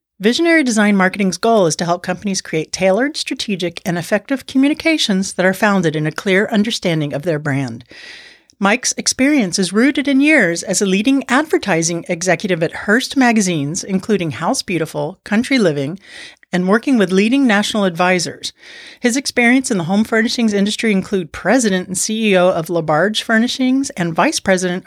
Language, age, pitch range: English, 40-59, 175-245 Hz